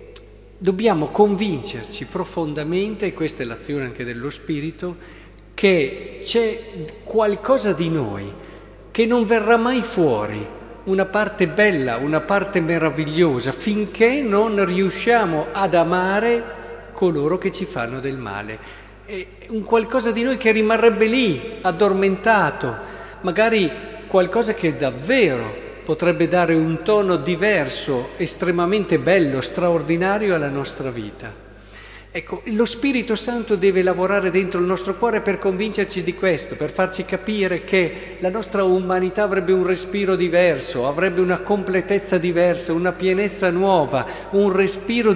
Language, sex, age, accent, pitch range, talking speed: Italian, male, 50-69, native, 170-210 Hz, 125 wpm